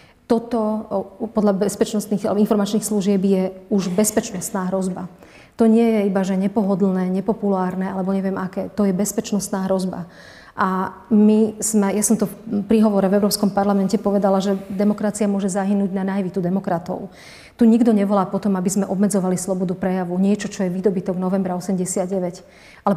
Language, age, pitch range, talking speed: Czech, 40-59, 190-210 Hz, 150 wpm